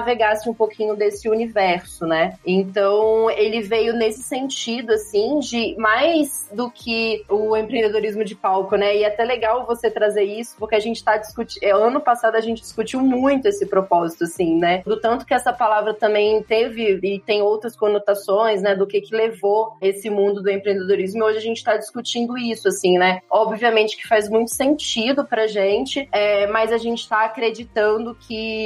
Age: 20-39